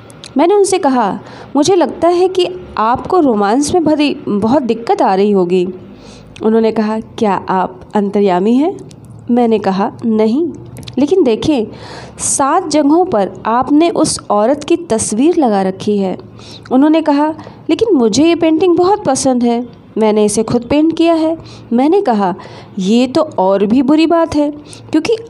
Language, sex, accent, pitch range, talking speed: Hindi, female, native, 220-315 Hz, 150 wpm